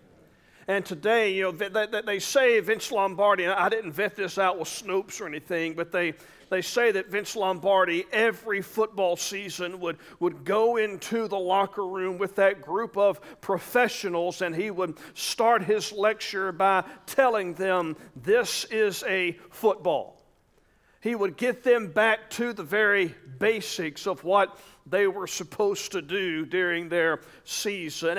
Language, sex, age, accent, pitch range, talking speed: English, male, 40-59, American, 185-225 Hz, 160 wpm